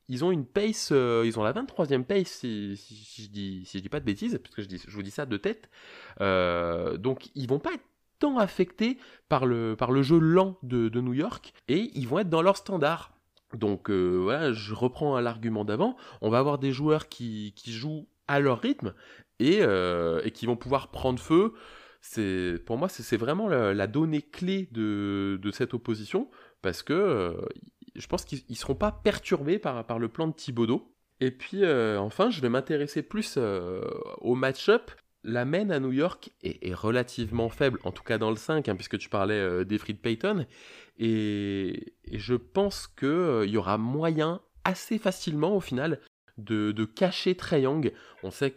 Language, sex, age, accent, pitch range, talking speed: French, male, 20-39, French, 105-145 Hz, 205 wpm